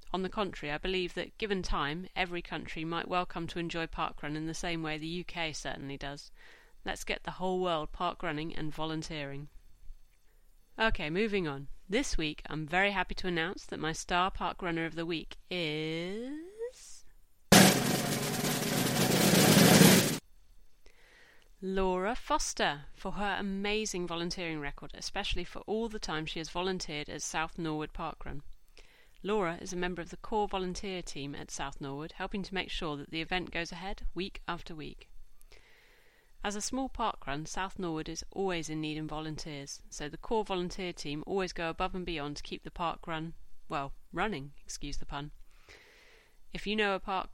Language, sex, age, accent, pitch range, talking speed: English, female, 30-49, British, 155-200 Hz, 165 wpm